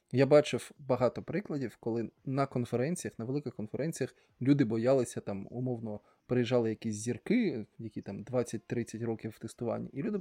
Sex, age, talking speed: male, 20-39, 145 wpm